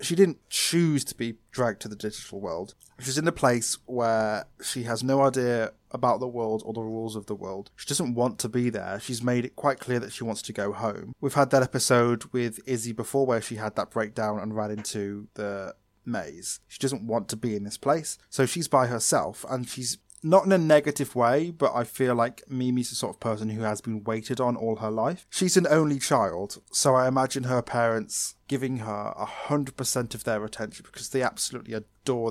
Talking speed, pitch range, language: 215 wpm, 110-130 Hz, English